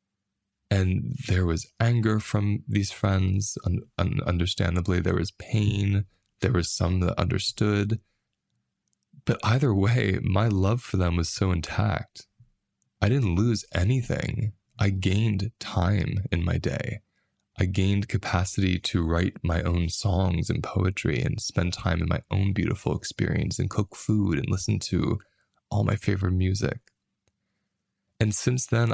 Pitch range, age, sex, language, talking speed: 95-110 Hz, 20-39, male, English, 145 wpm